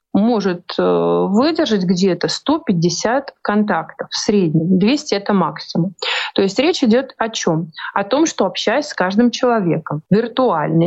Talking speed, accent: 135 wpm, native